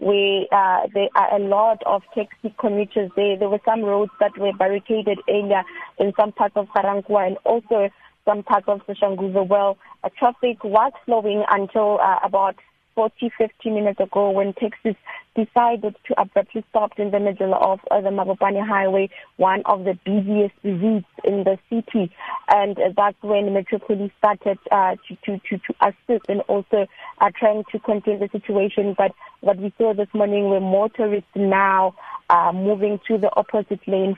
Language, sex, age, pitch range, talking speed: English, female, 20-39, 195-215 Hz, 175 wpm